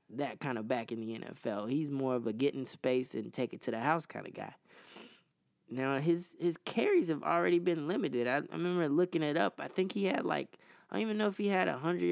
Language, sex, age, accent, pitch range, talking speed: English, male, 20-39, American, 125-160 Hz, 250 wpm